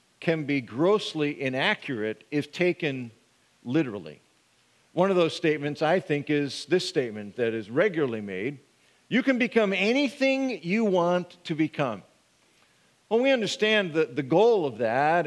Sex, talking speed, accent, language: male, 140 wpm, American, English